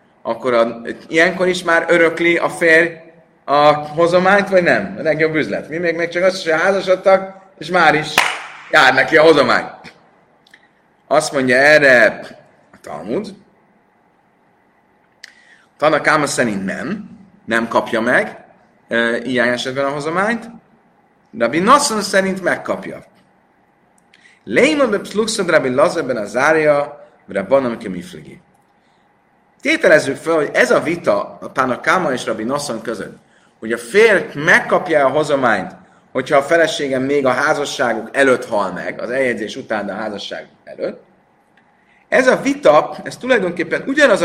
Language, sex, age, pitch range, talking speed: Hungarian, male, 30-49, 145-195 Hz, 135 wpm